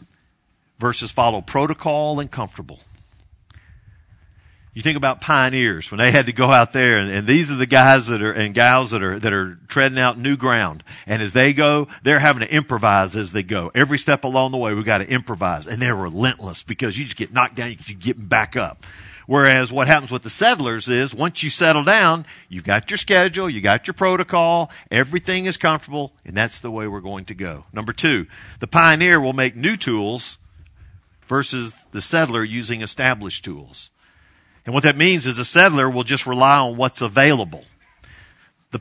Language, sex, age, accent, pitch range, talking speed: English, male, 50-69, American, 100-140 Hz, 195 wpm